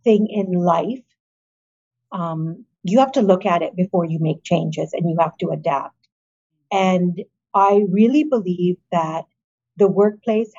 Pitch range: 175-200 Hz